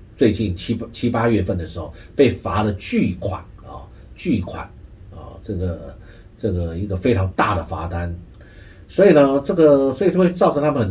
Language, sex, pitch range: Chinese, male, 90-115 Hz